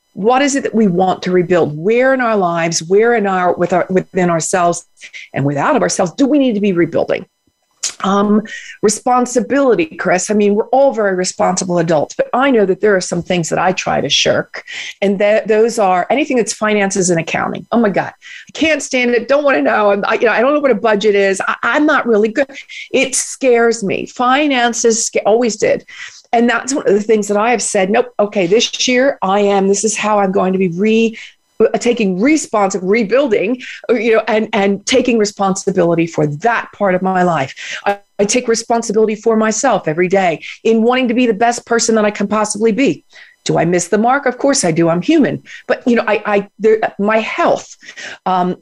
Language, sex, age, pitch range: English, female, 40-59, 195-245 Hz